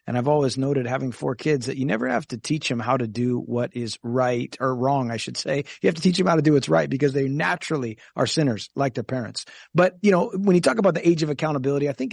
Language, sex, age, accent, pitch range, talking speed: English, male, 30-49, American, 130-160 Hz, 275 wpm